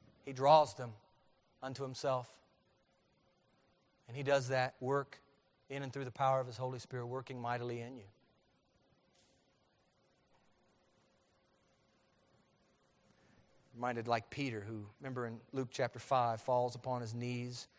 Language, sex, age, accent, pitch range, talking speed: English, male, 40-59, American, 125-165 Hz, 120 wpm